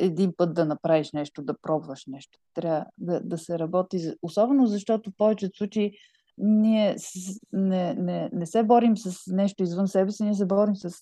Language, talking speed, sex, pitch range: Bulgarian, 185 wpm, female, 180-220 Hz